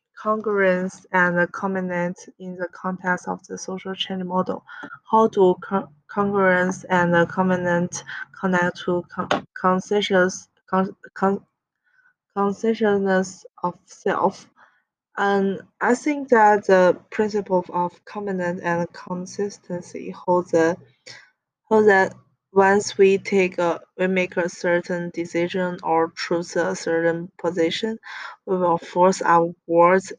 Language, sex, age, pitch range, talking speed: English, female, 20-39, 170-195 Hz, 125 wpm